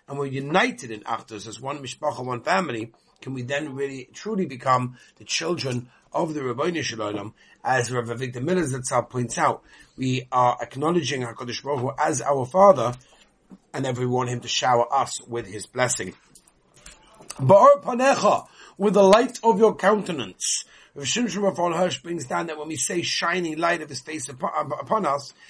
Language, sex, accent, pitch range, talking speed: English, male, British, 135-195 Hz, 165 wpm